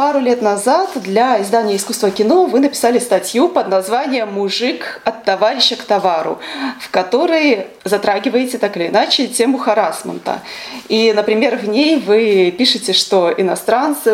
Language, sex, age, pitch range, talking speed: Russian, female, 20-39, 190-235 Hz, 140 wpm